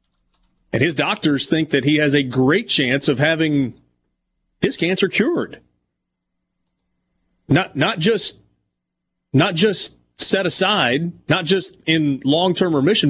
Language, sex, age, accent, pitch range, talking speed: English, male, 30-49, American, 105-155 Hz, 125 wpm